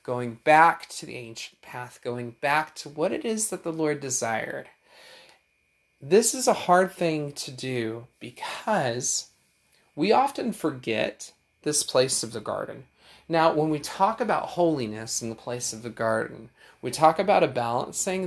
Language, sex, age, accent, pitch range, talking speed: English, male, 30-49, American, 125-170 Hz, 160 wpm